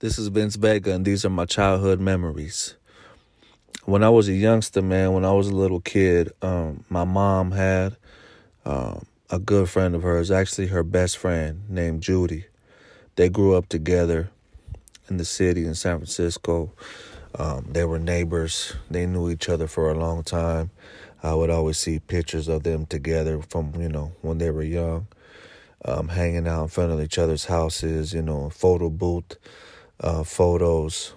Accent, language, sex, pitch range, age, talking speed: American, English, male, 80-95 Hz, 30-49, 175 wpm